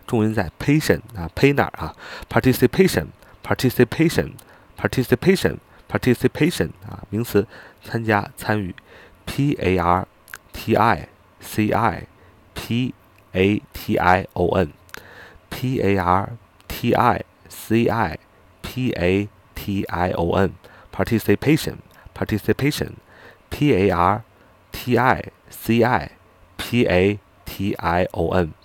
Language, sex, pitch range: Chinese, male, 90-115 Hz